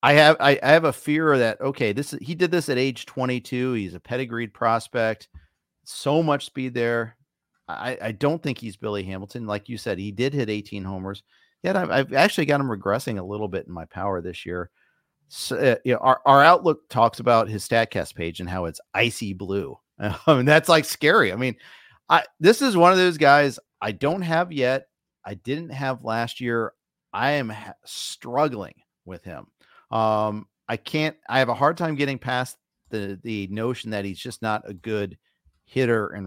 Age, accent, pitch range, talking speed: 40-59, American, 105-140 Hz, 200 wpm